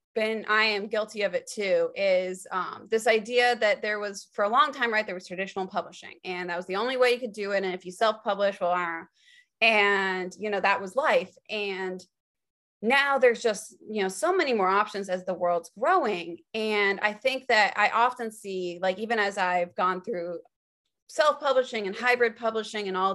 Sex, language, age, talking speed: female, English, 20-39, 200 wpm